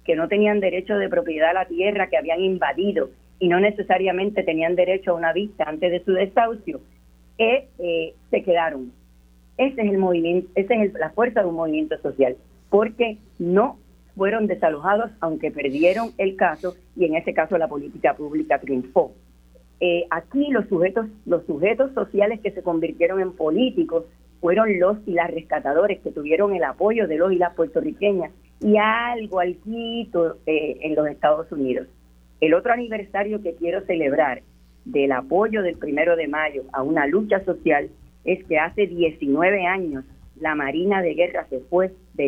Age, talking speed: 40-59, 170 wpm